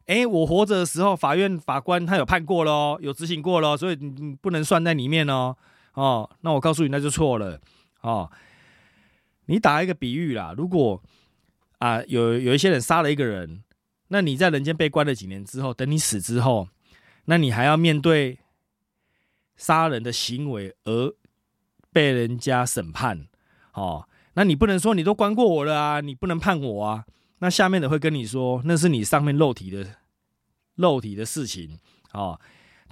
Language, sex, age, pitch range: Chinese, male, 30-49, 120-170 Hz